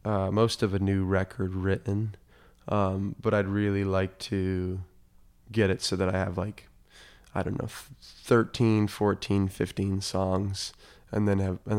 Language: English